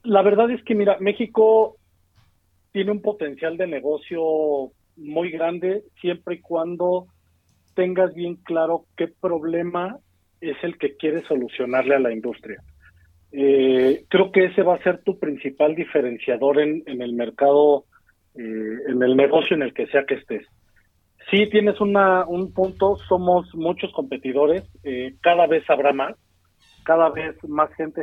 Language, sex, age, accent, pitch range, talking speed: Spanish, male, 40-59, Mexican, 130-175 Hz, 150 wpm